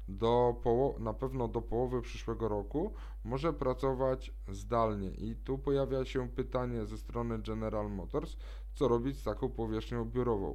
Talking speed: 150 wpm